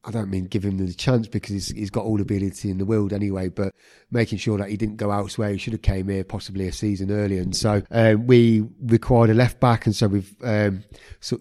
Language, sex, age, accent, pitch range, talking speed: English, male, 30-49, British, 100-110 Hz, 250 wpm